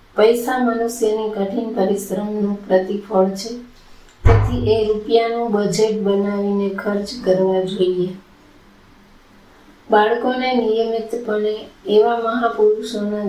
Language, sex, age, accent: Gujarati, female, 20-39, native